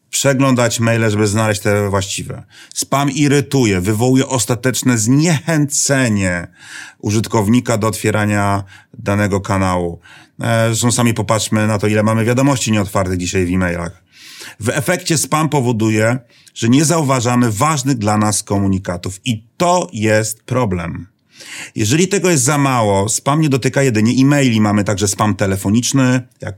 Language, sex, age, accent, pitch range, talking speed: Polish, male, 30-49, native, 105-135 Hz, 130 wpm